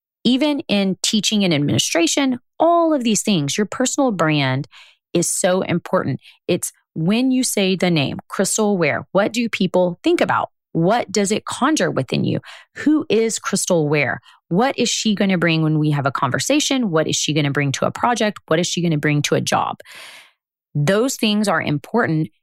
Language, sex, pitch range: English, female, 160-220 Hz